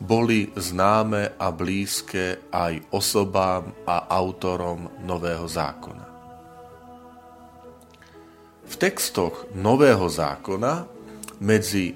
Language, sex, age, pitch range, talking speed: Slovak, male, 40-59, 90-110 Hz, 75 wpm